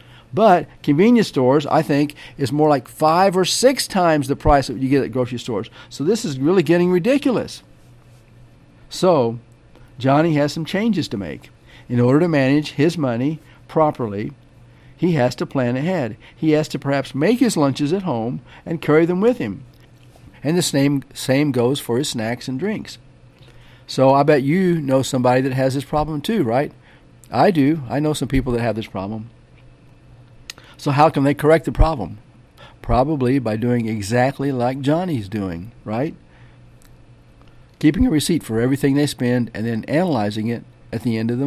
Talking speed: 175 wpm